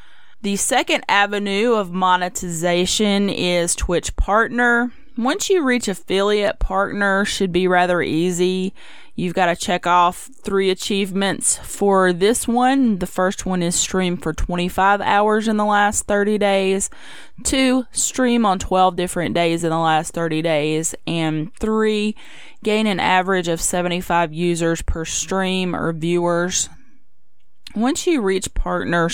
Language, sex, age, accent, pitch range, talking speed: English, female, 20-39, American, 180-220 Hz, 140 wpm